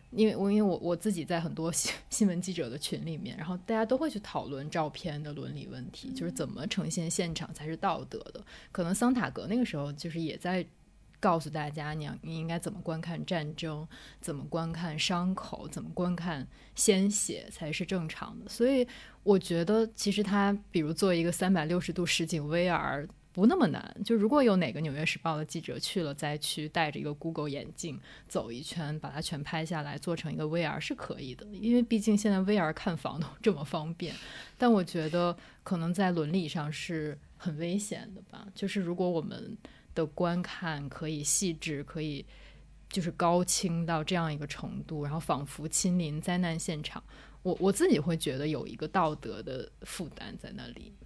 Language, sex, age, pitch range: English, female, 20-39, 155-195 Hz